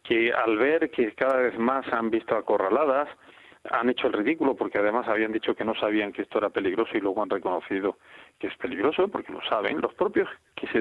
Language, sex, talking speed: Spanish, male, 215 wpm